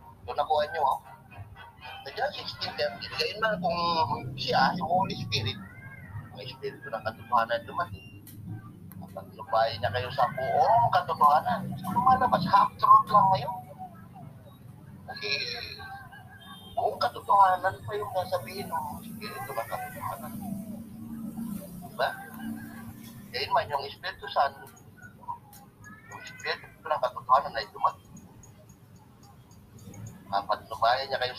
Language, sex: English, male